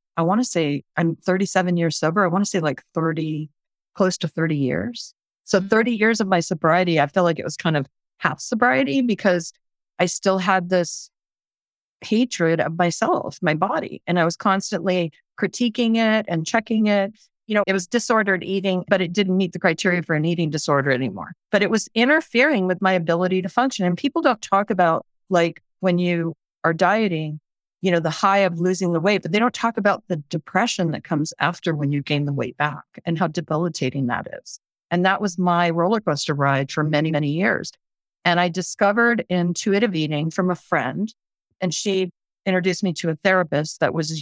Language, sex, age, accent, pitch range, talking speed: English, female, 40-59, American, 160-200 Hz, 195 wpm